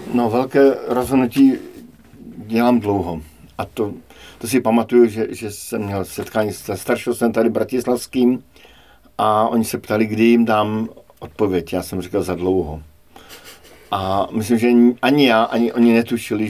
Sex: male